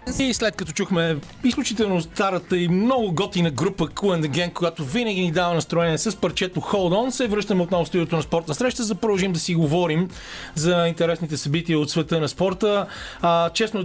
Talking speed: 180 wpm